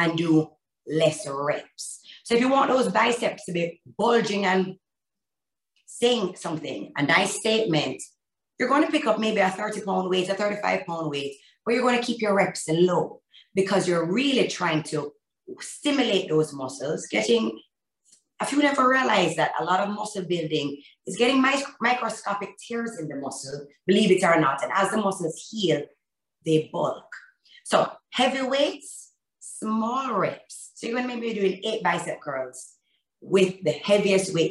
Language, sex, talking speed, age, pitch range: English, female, 165 wpm, 30-49, 155-230 Hz